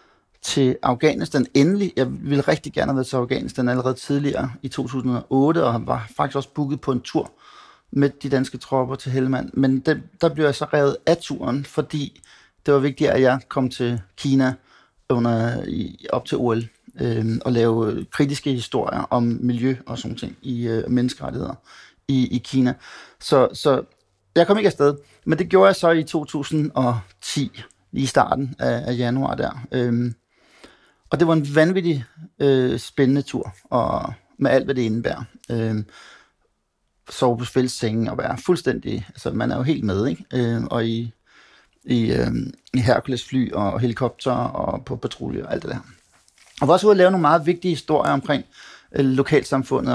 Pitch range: 125-150 Hz